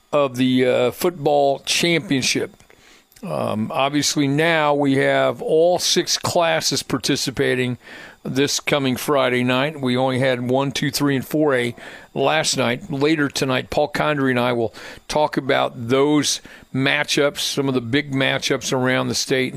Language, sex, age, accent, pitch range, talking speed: English, male, 50-69, American, 130-155 Hz, 145 wpm